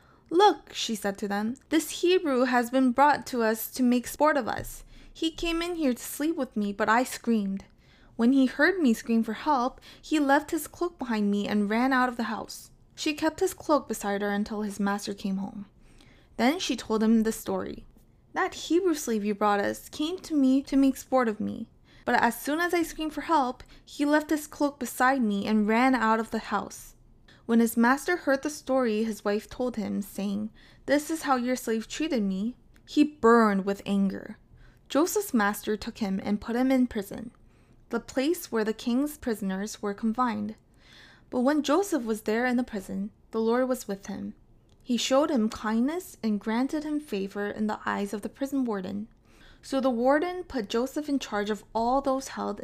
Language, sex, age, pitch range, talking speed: English, female, 20-39, 215-280 Hz, 200 wpm